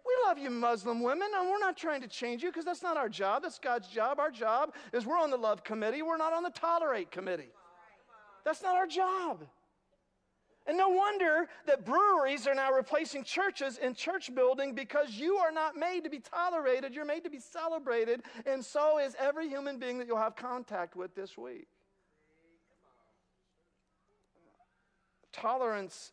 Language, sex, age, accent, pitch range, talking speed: English, male, 50-69, American, 185-305 Hz, 175 wpm